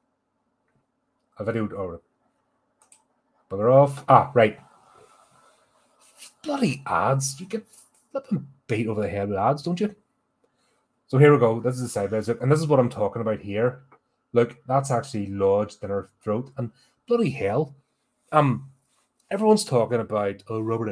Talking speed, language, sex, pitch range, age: 145 wpm, English, male, 105-135 Hz, 30-49